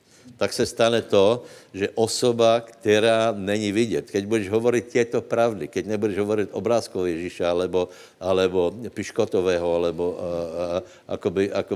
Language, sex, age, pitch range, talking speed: Slovak, male, 60-79, 100-115 Hz, 115 wpm